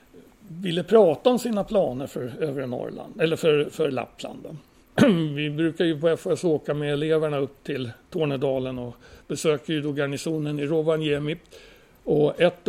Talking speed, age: 155 wpm, 60-79